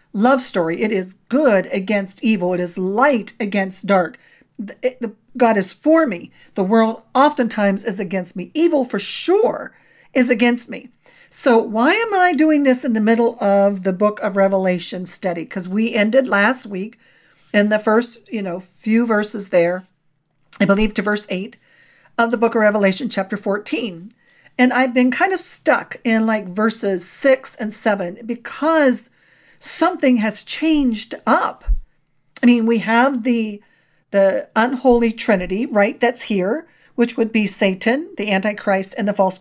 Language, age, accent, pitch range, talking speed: English, 50-69, American, 200-260 Hz, 165 wpm